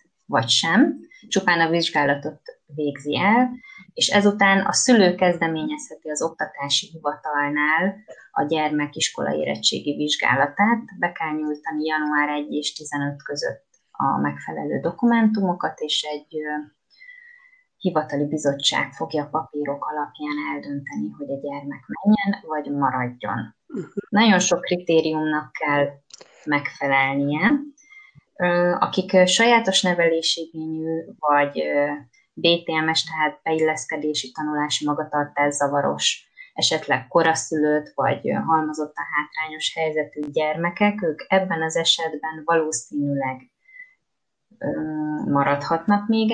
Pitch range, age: 150-190 Hz, 20-39